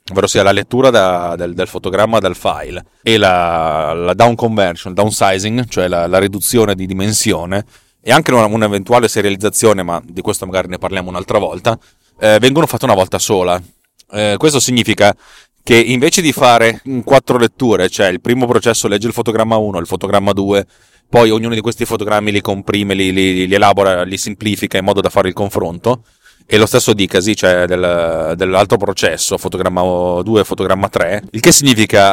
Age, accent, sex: 30-49, native, male